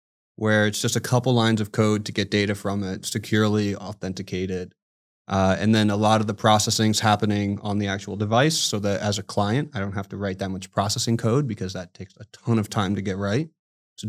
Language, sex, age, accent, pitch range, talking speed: English, male, 20-39, American, 100-110 Hz, 225 wpm